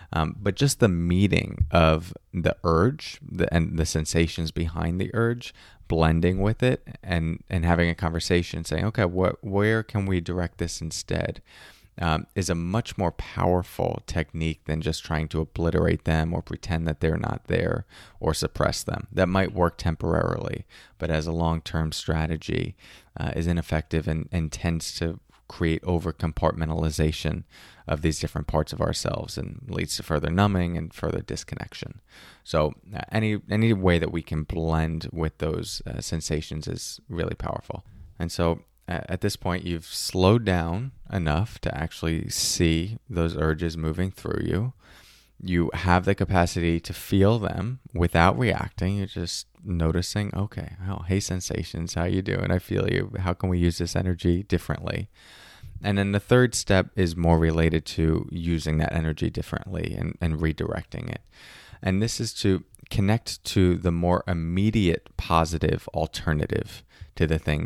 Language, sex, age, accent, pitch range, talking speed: English, male, 20-39, American, 80-100 Hz, 160 wpm